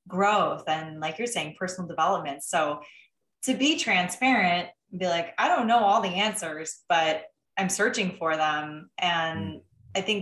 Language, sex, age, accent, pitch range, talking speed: English, female, 20-39, American, 165-210 Hz, 160 wpm